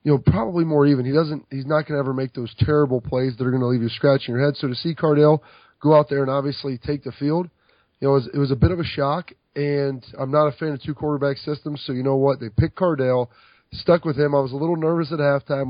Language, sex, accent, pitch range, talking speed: English, male, American, 125-145 Hz, 280 wpm